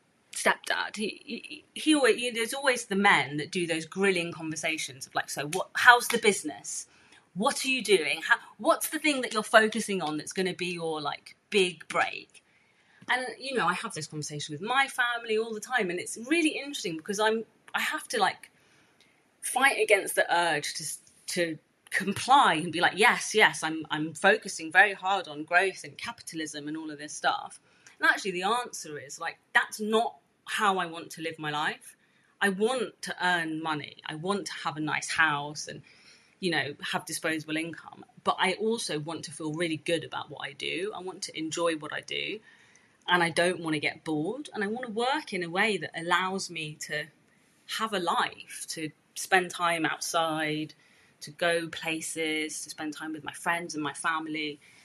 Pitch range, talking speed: 155-225 Hz, 195 wpm